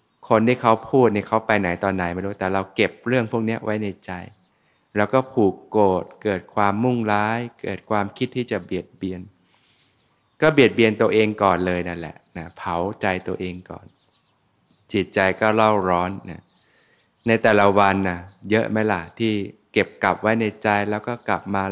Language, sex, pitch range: Thai, male, 95-115 Hz